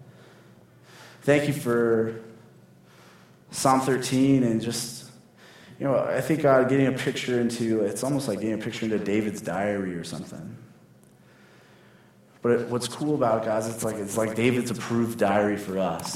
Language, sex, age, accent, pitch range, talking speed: English, male, 20-39, American, 100-120 Hz, 165 wpm